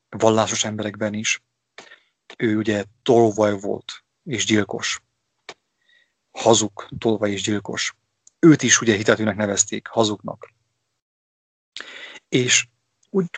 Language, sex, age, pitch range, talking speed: English, male, 30-49, 105-130 Hz, 95 wpm